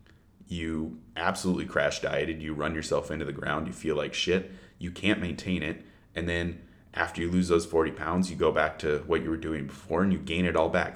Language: English